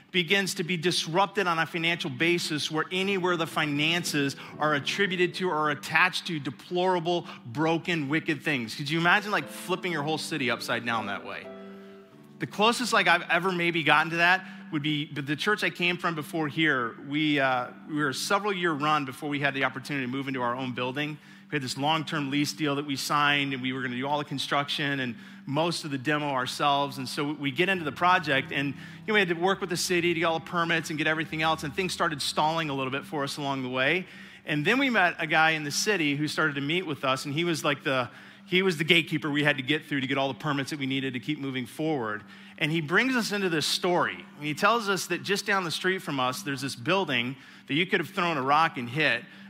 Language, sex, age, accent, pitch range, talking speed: English, male, 30-49, American, 140-180 Hz, 245 wpm